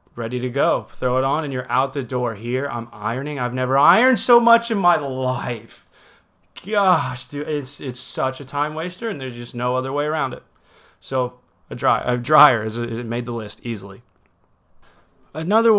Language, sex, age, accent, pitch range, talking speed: English, male, 30-49, American, 120-150 Hz, 195 wpm